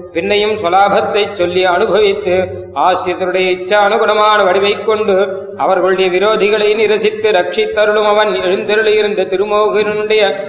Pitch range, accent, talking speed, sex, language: 195-215 Hz, native, 95 wpm, male, Tamil